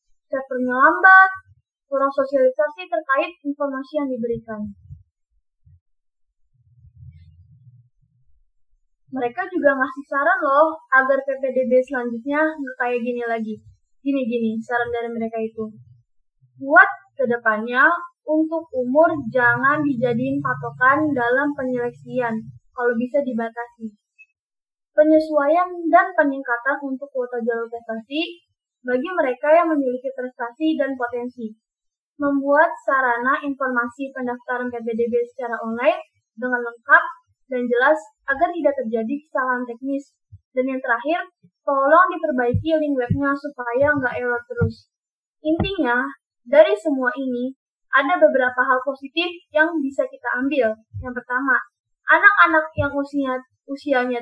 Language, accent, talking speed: Indonesian, native, 105 wpm